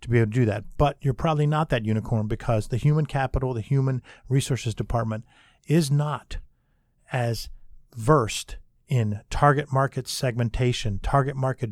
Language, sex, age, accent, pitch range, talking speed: English, male, 50-69, American, 110-130 Hz, 155 wpm